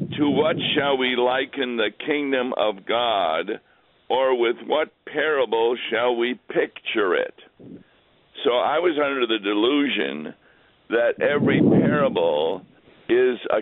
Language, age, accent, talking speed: English, 60-79, American, 125 wpm